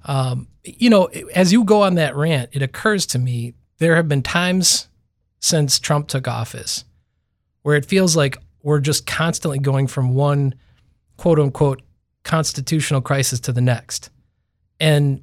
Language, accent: English, American